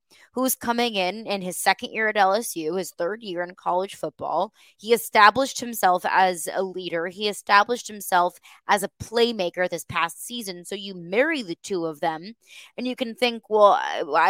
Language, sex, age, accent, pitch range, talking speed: English, female, 20-39, American, 180-230 Hz, 180 wpm